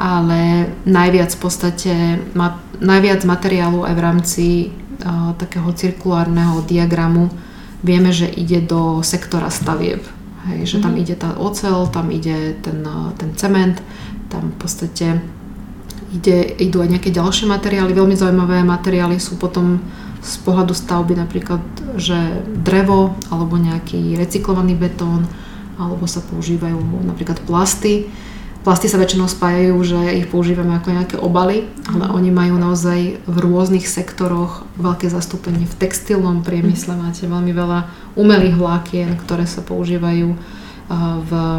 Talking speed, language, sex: 130 wpm, Slovak, female